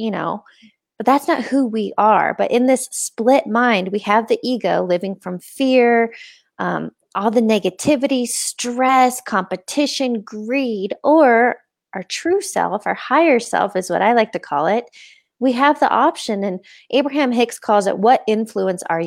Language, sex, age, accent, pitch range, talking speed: English, female, 20-39, American, 195-255 Hz, 165 wpm